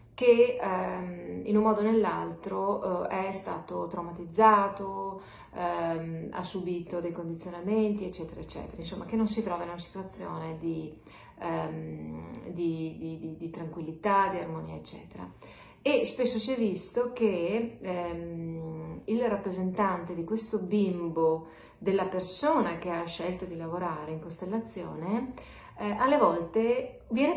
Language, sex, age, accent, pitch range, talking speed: Italian, female, 30-49, native, 175-225 Hz, 125 wpm